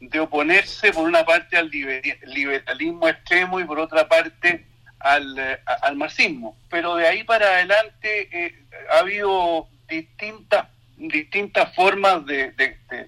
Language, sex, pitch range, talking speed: Spanish, male, 155-230 Hz, 135 wpm